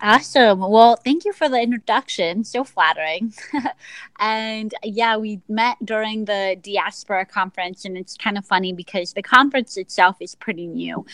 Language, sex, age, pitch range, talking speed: English, female, 20-39, 185-230 Hz, 155 wpm